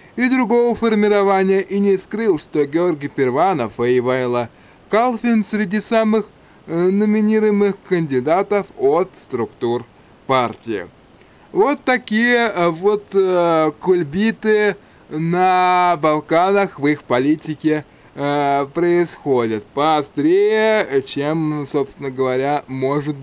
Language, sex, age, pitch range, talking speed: Russian, male, 20-39, 140-200 Hz, 95 wpm